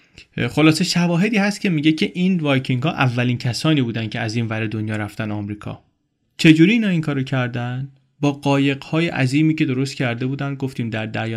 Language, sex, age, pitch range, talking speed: Persian, male, 30-49, 120-150 Hz, 185 wpm